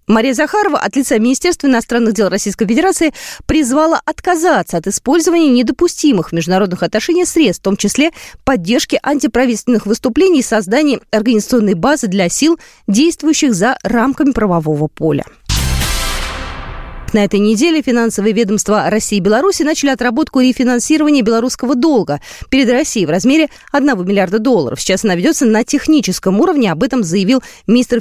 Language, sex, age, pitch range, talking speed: Russian, female, 20-39, 200-290 Hz, 140 wpm